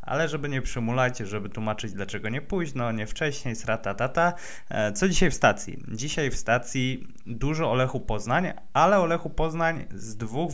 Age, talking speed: 20-39, 175 wpm